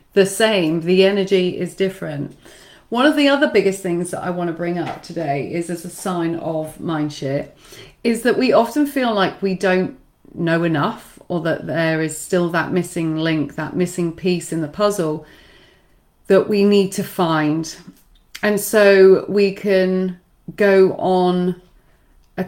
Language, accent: English, British